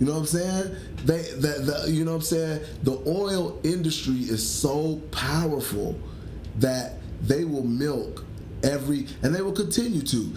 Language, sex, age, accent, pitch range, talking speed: English, male, 30-49, American, 115-165 Hz, 170 wpm